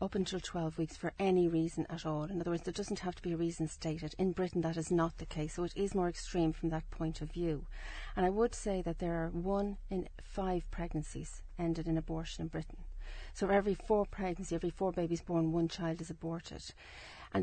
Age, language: 40-59, English